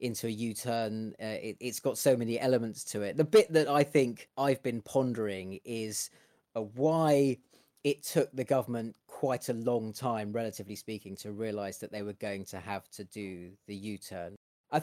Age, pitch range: 30-49, 115-160 Hz